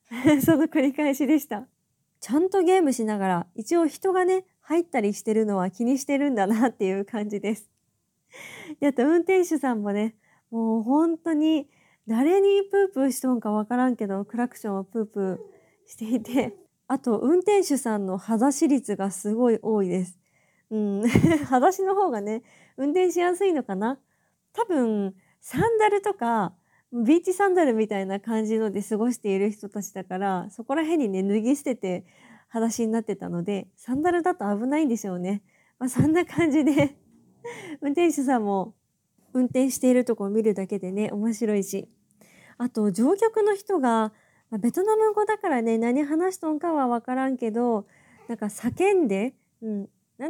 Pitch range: 210-310 Hz